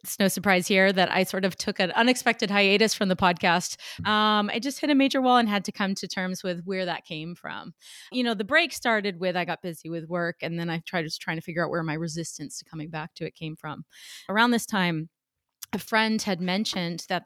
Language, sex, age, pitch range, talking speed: English, female, 30-49, 170-215 Hz, 245 wpm